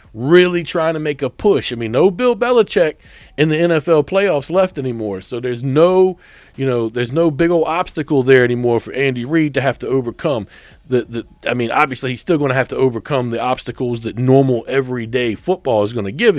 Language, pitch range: English, 115-155 Hz